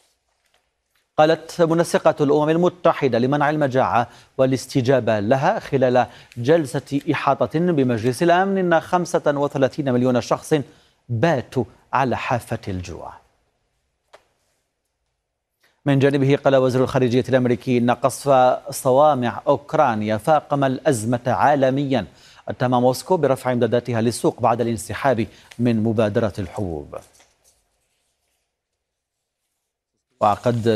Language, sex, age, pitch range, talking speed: Arabic, male, 40-59, 120-155 Hz, 90 wpm